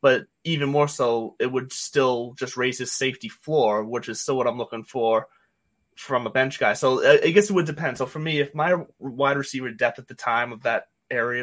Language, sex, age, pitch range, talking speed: English, male, 20-39, 120-145 Hz, 225 wpm